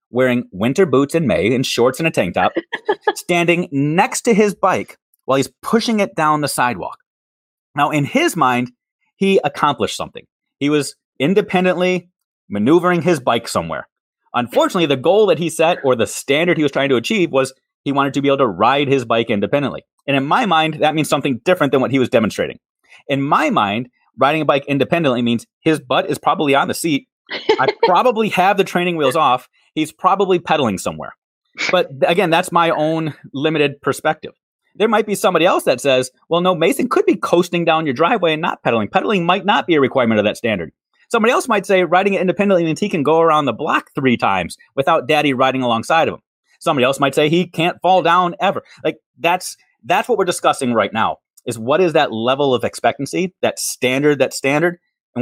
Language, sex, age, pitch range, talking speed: English, male, 30-49, 140-185 Hz, 205 wpm